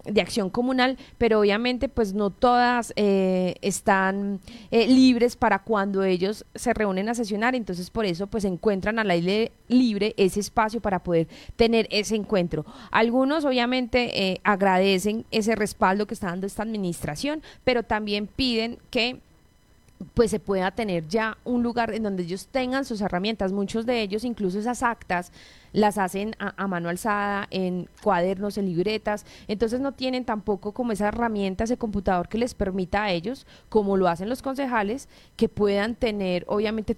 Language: Spanish